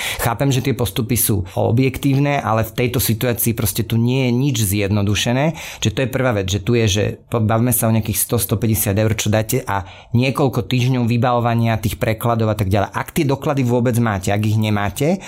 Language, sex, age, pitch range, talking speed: Slovak, male, 30-49, 110-130 Hz, 195 wpm